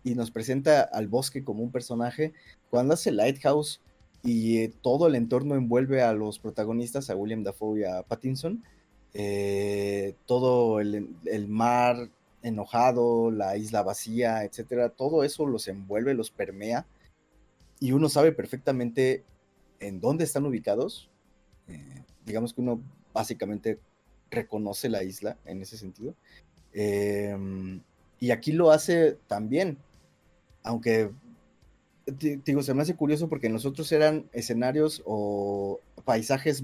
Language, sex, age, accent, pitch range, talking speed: Spanish, male, 30-49, Mexican, 110-140 Hz, 135 wpm